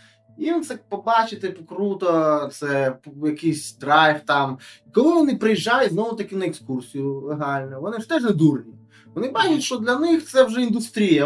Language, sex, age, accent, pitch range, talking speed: Ukrainian, male, 20-39, native, 130-195 Hz, 150 wpm